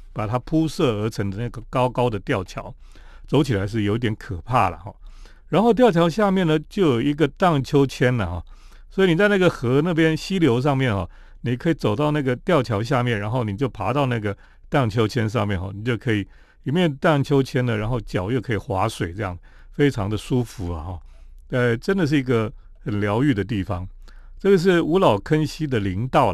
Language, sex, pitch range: Chinese, male, 105-150 Hz